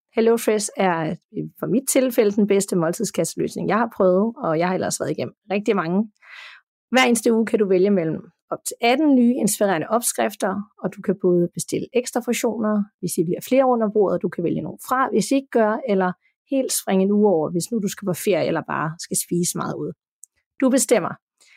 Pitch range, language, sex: 185-235 Hz, Danish, female